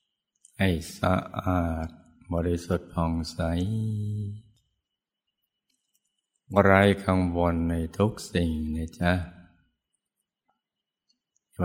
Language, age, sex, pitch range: Thai, 60-79, male, 85-95 Hz